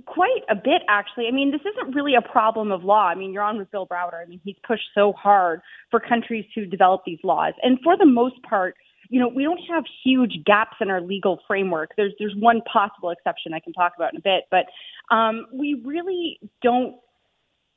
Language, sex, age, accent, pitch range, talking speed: English, female, 30-49, American, 190-260 Hz, 220 wpm